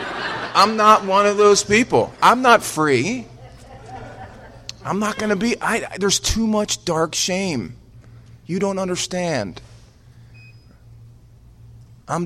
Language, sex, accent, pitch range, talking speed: English, male, American, 115-145 Hz, 120 wpm